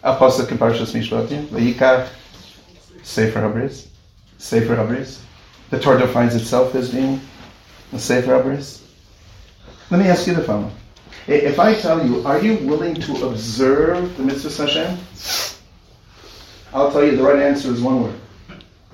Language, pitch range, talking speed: English, 110-140 Hz, 135 wpm